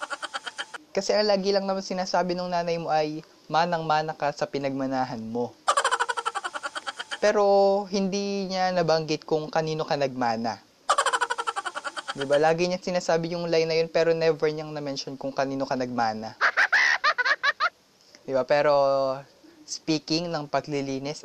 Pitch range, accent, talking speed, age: 130-175 Hz, native, 130 wpm, 20-39